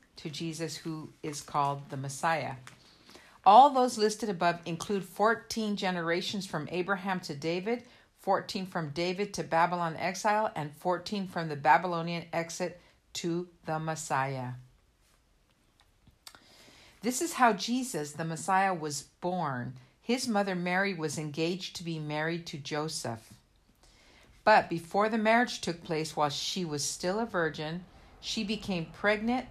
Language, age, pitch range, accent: English, 50-69, 150-200 Hz, American